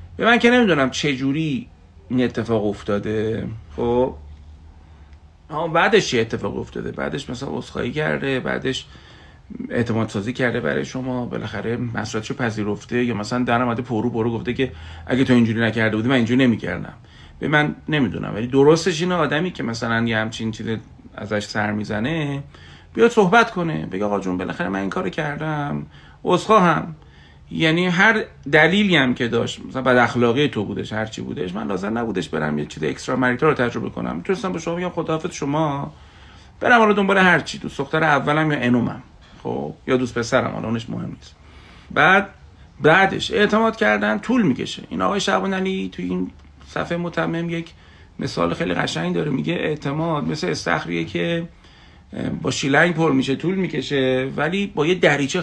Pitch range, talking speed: 105-160 Hz, 165 wpm